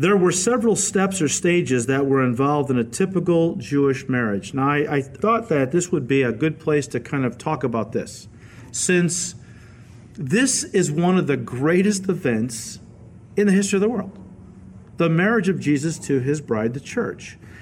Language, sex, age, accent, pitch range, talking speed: English, male, 50-69, American, 140-195 Hz, 185 wpm